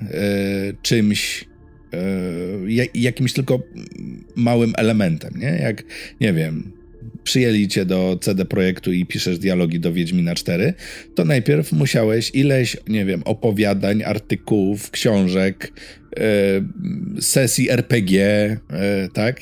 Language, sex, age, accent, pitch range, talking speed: Polish, male, 50-69, native, 95-120 Hz, 115 wpm